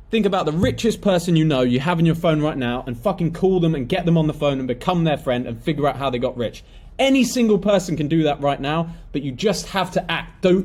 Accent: British